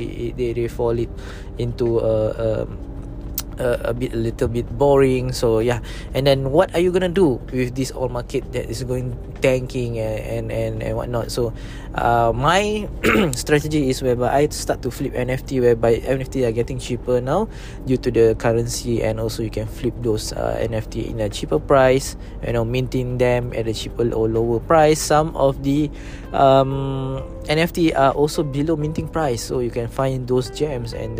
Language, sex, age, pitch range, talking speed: English, male, 20-39, 115-135 Hz, 190 wpm